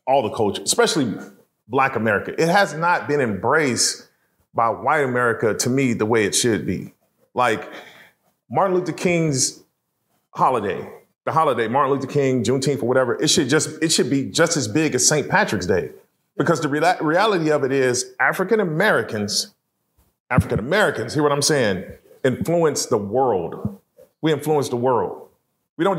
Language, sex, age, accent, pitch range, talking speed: English, male, 30-49, American, 145-190 Hz, 155 wpm